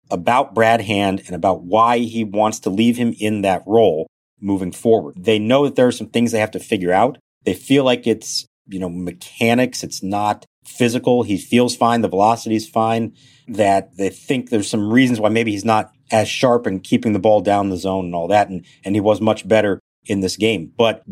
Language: English